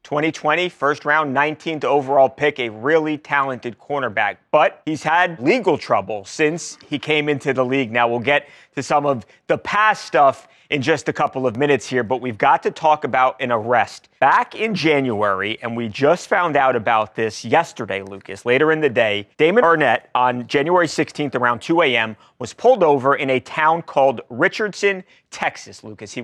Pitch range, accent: 130-170 Hz, American